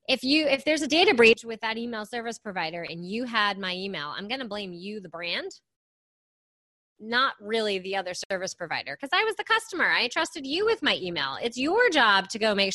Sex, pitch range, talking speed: female, 200-285 Hz, 220 wpm